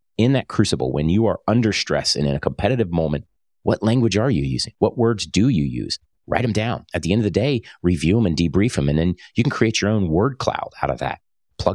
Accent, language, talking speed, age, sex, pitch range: American, English, 255 wpm, 30-49, male, 75-100 Hz